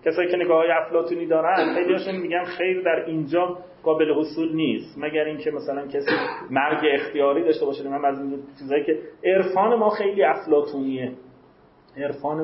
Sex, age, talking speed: male, 30-49, 145 wpm